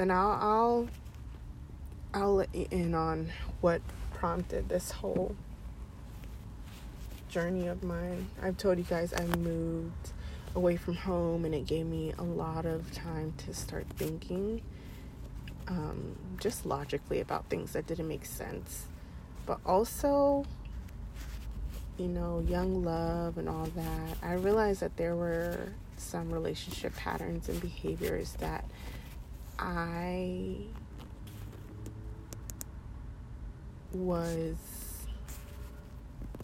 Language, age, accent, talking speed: English, 30-49, American, 110 wpm